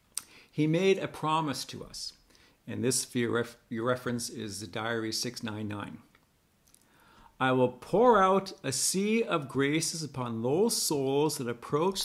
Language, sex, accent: English, male, American